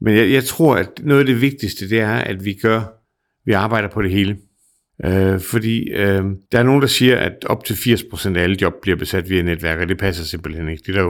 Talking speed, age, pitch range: 250 wpm, 60-79, 95-125 Hz